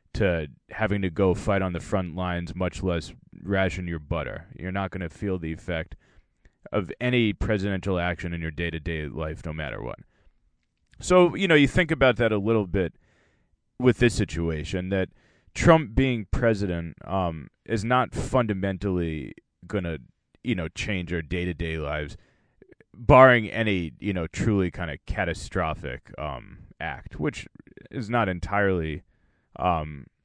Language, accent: English, American